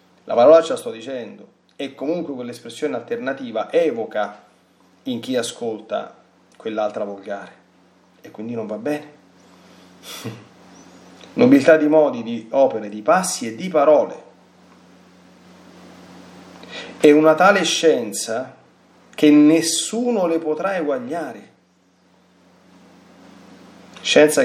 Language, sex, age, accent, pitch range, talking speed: Italian, male, 30-49, native, 105-150 Hz, 100 wpm